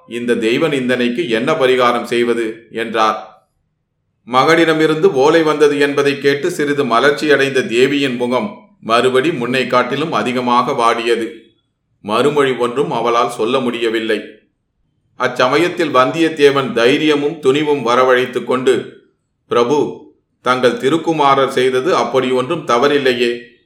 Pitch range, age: 120-140 Hz, 30-49